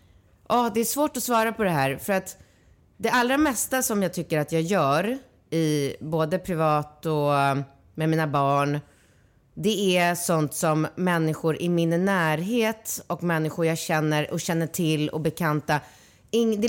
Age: 30-49